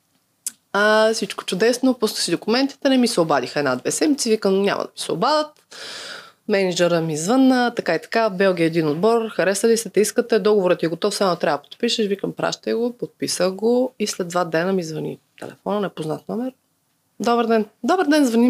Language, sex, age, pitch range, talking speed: Bulgarian, female, 20-39, 190-260 Hz, 190 wpm